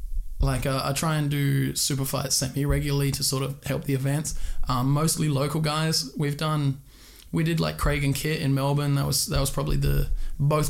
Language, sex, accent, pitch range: English, male, Australian, 130-150 Hz